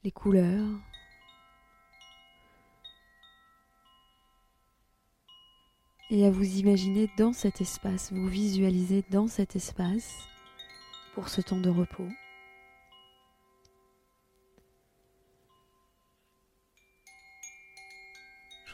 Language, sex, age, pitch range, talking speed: French, female, 20-39, 165-215 Hz, 65 wpm